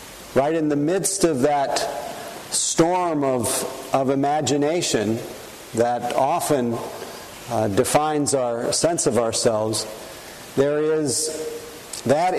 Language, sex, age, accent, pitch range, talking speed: English, male, 50-69, American, 120-160 Hz, 100 wpm